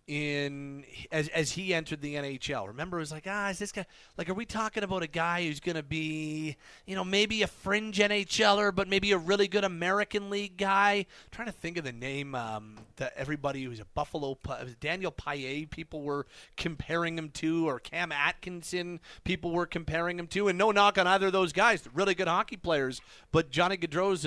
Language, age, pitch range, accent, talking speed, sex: English, 30-49, 155-195 Hz, American, 210 wpm, male